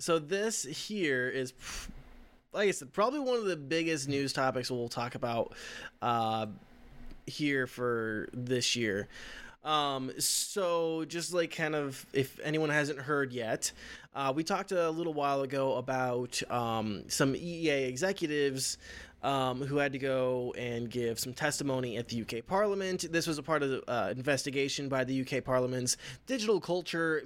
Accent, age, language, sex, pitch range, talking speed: American, 20-39, English, male, 130-160 Hz, 160 wpm